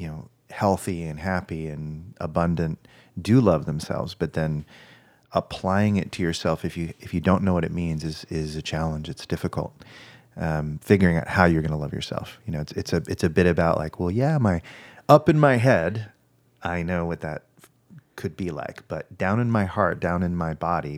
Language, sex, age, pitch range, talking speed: English, male, 30-49, 80-105 Hz, 210 wpm